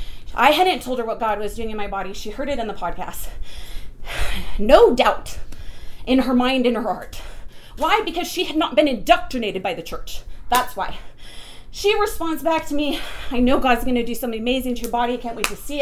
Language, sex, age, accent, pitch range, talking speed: English, female, 30-49, American, 250-315 Hz, 215 wpm